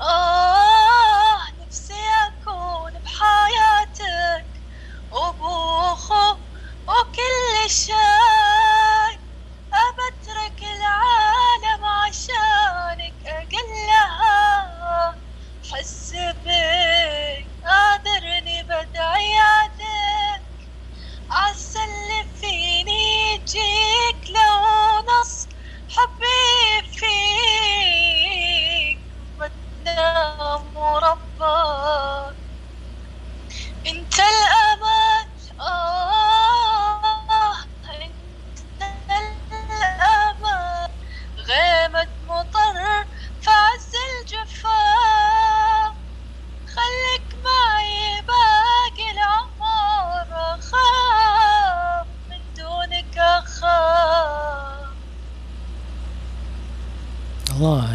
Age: 20-39